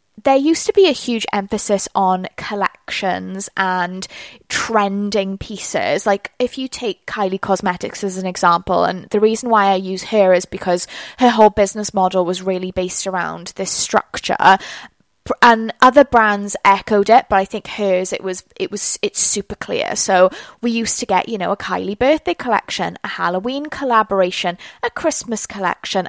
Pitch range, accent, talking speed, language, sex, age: 190-230 Hz, British, 170 wpm, English, female, 20-39